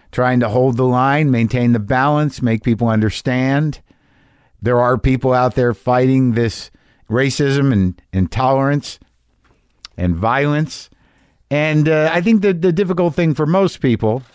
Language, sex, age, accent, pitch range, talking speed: English, male, 50-69, American, 110-145 Hz, 140 wpm